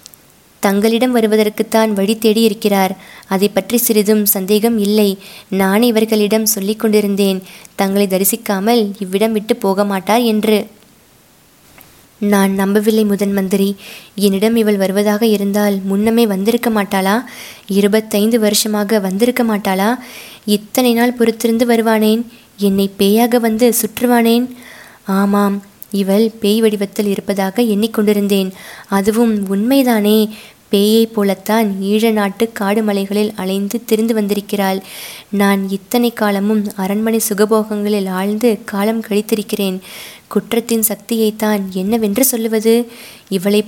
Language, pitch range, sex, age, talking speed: Tamil, 200-225 Hz, female, 20-39, 100 wpm